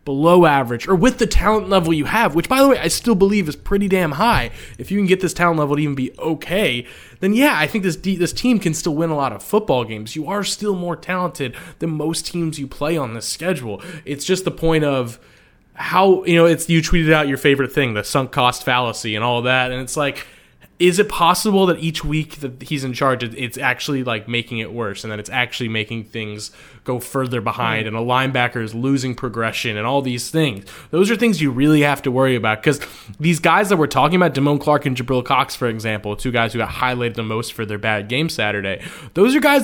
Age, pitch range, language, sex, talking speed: 20-39, 125-165 Hz, English, male, 240 wpm